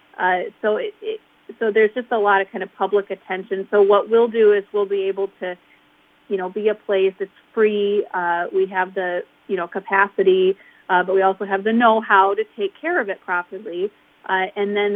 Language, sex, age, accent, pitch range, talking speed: English, female, 30-49, American, 185-220 Hz, 205 wpm